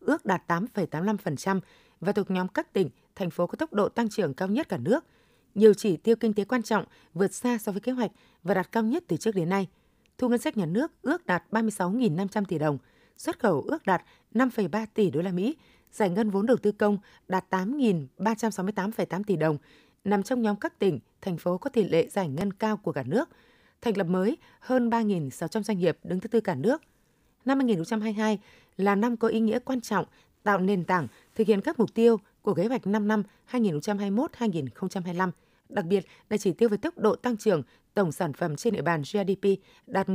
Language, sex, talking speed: Vietnamese, female, 205 wpm